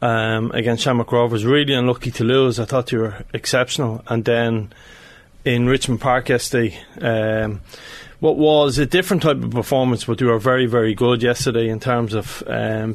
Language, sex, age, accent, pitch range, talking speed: English, male, 30-49, Irish, 115-135 Hz, 175 wpm